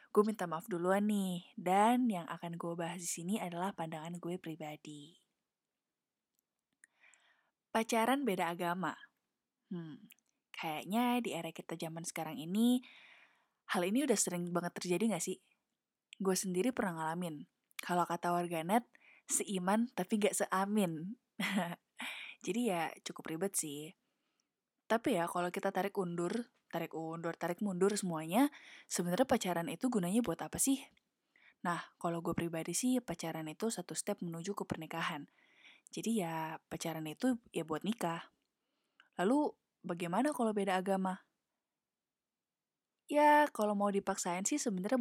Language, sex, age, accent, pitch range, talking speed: Indonesian, female, 20-39, native, 170-225 Hz, 130 wpm